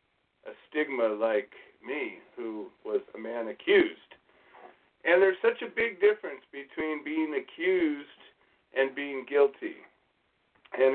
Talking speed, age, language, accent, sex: 120 wpm, 40-59, English, American, male